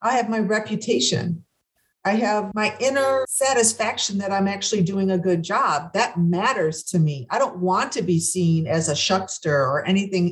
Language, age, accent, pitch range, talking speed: English, 50-69, American, 170-225 Hz, 180 wpm